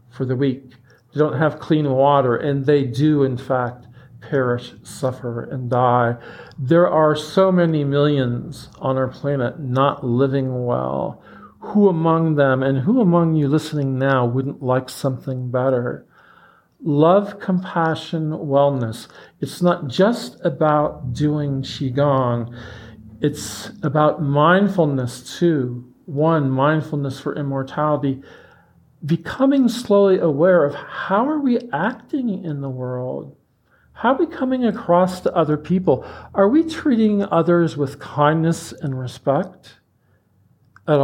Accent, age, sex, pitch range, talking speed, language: American, 50-69, male, 130-175 Hz, 125 wpm, English